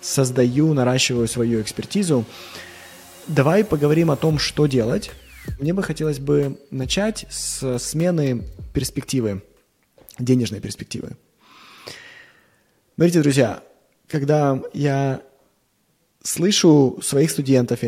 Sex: male